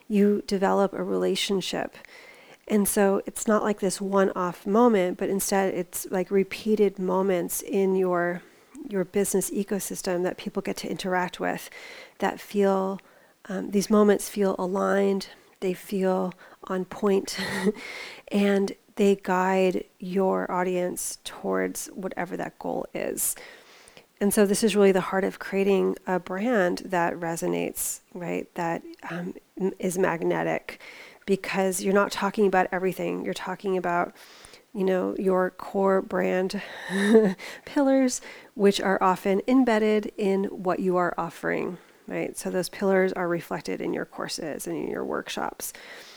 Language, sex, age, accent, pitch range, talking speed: English, female, 30-49, American, 185-205 Hz, 135 wpm